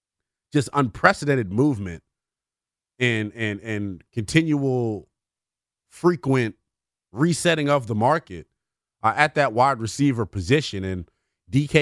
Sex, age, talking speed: male, 30-49, 95 wpm